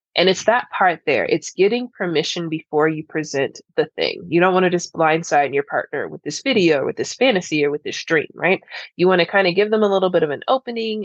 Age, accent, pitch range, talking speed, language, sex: 20-39, American, 165-250 Hz, 250 wpm, English, female